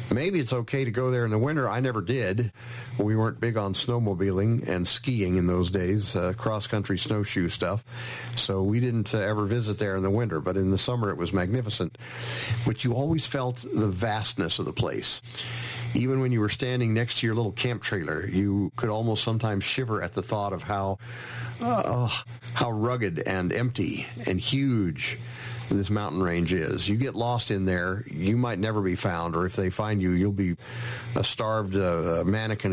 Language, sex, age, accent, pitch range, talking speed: English, male, 50-69, American, 100-120 Hz, 195 wpm